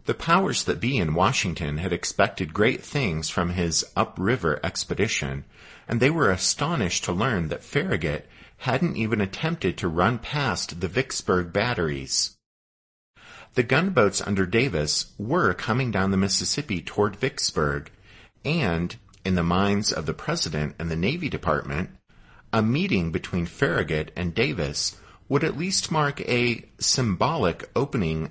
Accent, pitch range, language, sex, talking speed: American, 85-125 Hz, English, male, 140 wpm